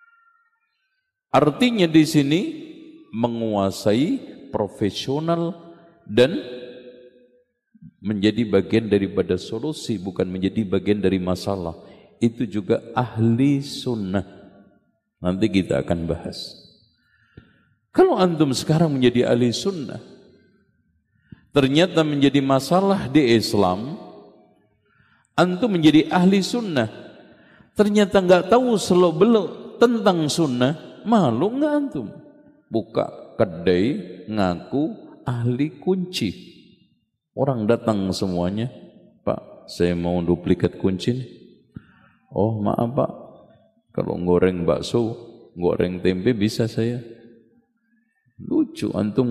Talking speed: 90 wpm